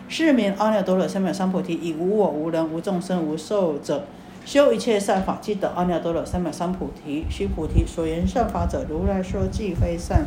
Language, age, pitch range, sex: Chinese, 50-69, 175-230 Hz, female